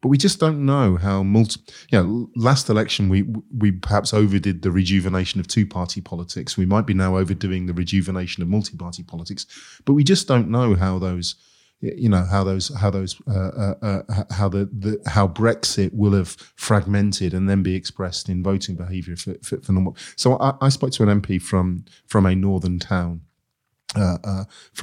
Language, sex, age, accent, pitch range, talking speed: English, male, 30-49, British, 95-110 Hz, 185 wpm